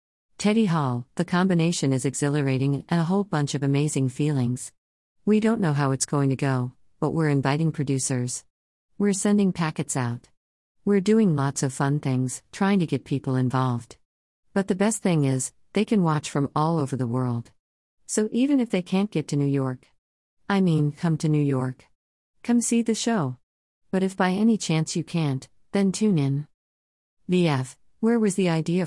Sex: female